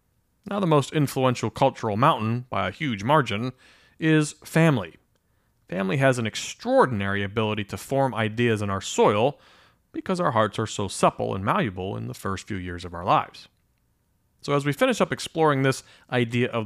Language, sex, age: English, male, 30-49